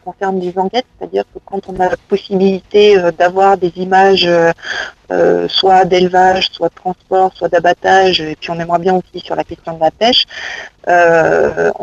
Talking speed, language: 170 wpm, French